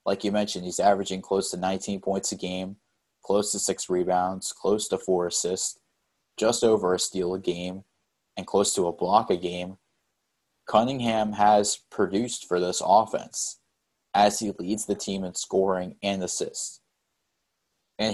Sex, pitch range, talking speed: male, 95-110 Hz, 160 wpm